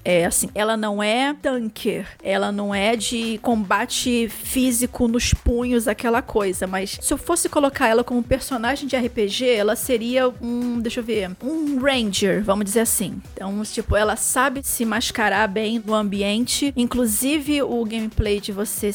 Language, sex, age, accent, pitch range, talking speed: Portuguese, female, 40-59, Brazilian, 210-250 Hz, 160 wpm